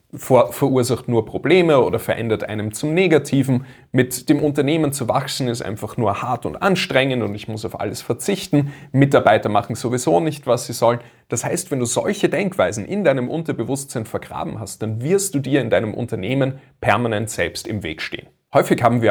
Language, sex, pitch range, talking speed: German, male, 115-135 Hz, 180 wpm